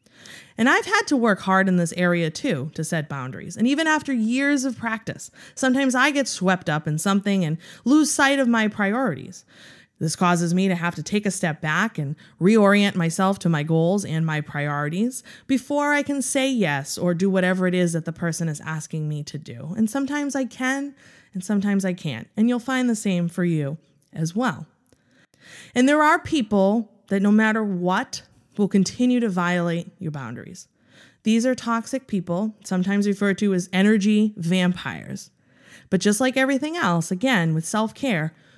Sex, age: female, 30-49